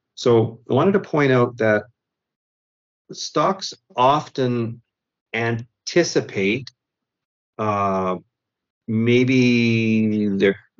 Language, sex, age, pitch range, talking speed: English, male, 40-59, 95-120 Hz, 70 wpm